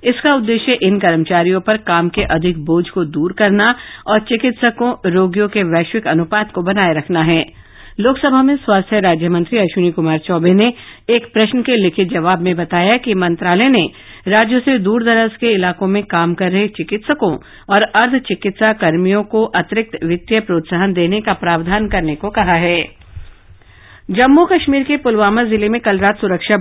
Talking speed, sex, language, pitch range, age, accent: 170 wpm, female, Hindi, 180-230 Hz, 50-69, native